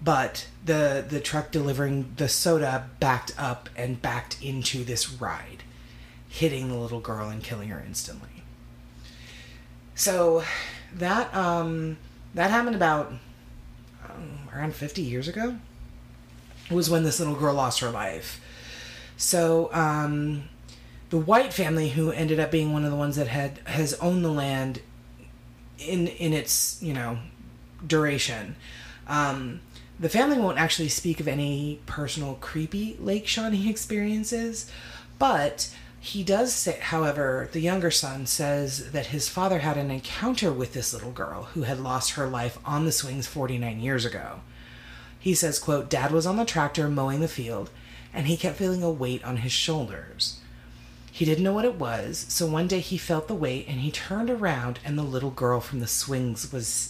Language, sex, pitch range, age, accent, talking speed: English, female, 120-165 Hz, 30-49, American, 160 wpm